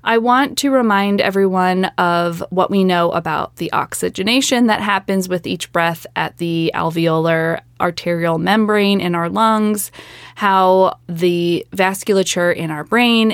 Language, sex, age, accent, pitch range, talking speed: English, female, 20-39, American, 175-200 Hz, 140 wpm